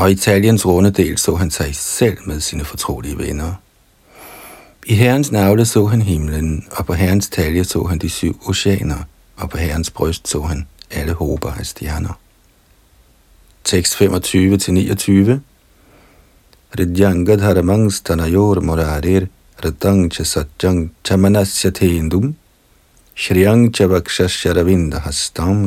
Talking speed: 115 wpm